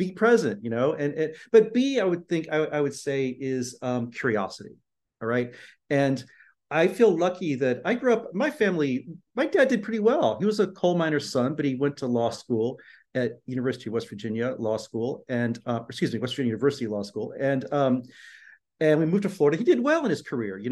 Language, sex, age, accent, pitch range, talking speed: English, male, 40-59, American, 125-185 Hz, 225 wpm